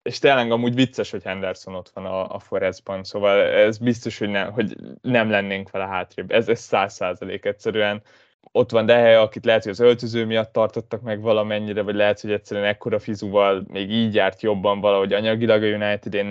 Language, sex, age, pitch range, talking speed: Hungarian, male, 20-39, 100-120 Hz, 190 wpm